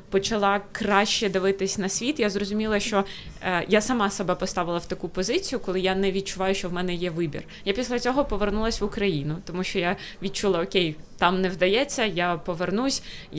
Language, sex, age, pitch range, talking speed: Ukrainian, female, 20-39, 175-200 Hz, 185 wpm